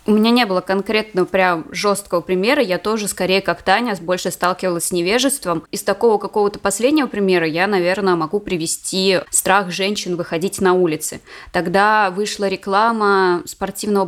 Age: 20-39